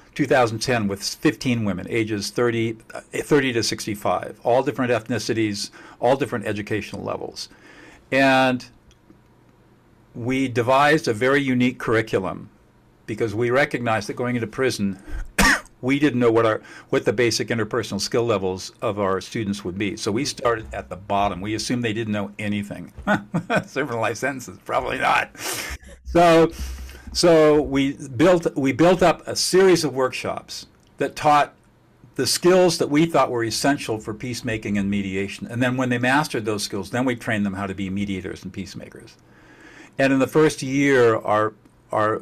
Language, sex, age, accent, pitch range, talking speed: English, male, 50-69, American, 105-135 Hz, 160 wpm